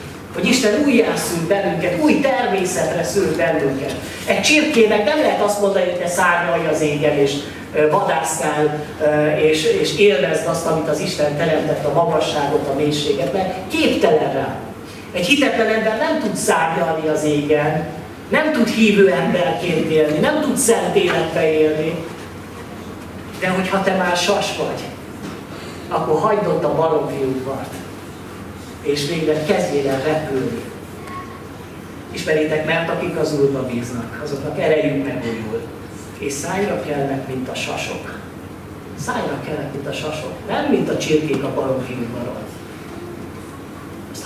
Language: Hungarian